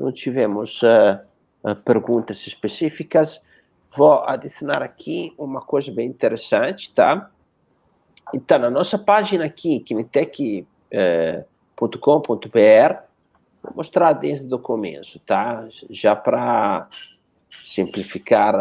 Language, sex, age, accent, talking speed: Portuguese, male, 50-69, Italian, 95 wpm